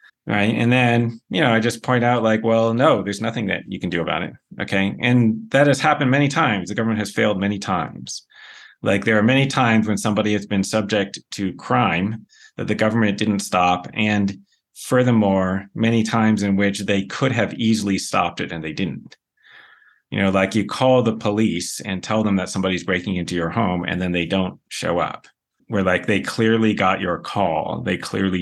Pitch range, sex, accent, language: 95-115 Hz, male, American, English